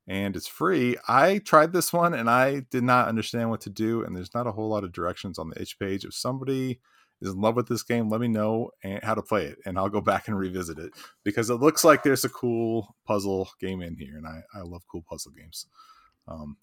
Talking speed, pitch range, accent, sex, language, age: 245 wpm, 100-140 Hz, American, male, English, 30-49